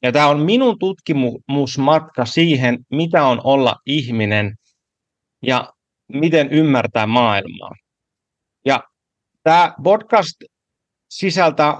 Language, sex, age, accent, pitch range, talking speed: Finnish, male, 30-49, native, 125-175 Hz, 90 wpm